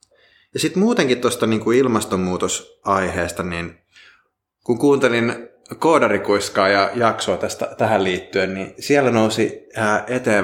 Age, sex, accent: 20-39, male, native